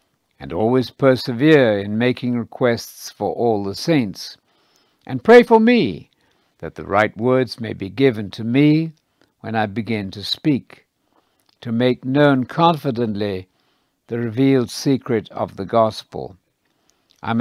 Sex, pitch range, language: male, 105-150 Hz, English